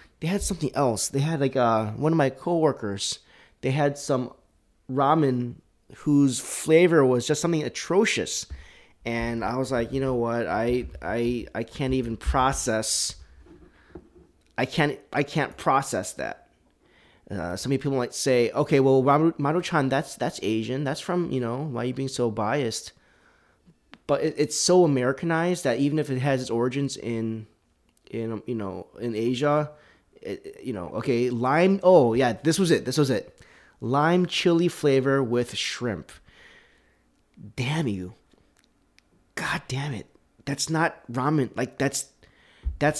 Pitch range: 120-155 Hz